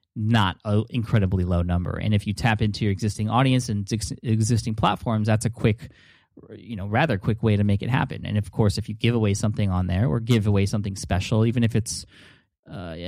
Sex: male